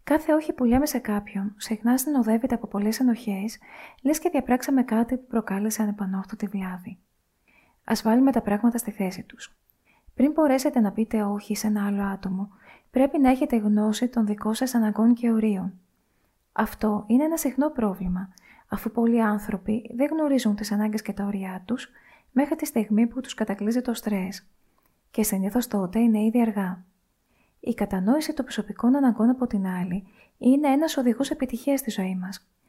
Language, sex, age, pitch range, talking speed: Greek, female, 20-39, 205-250 Hz, 165 wpm